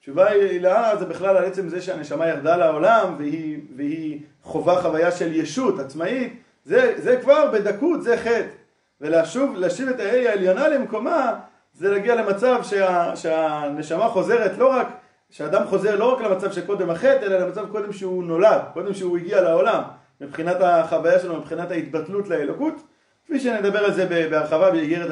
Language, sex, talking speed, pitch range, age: Hebrew, male, 165 wpm, 165-230 Hz, 30-49